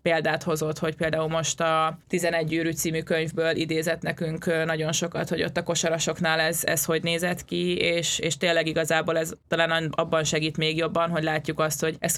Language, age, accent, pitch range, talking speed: English, 20-39, Finnish, 155-165 Hz, 185 wpm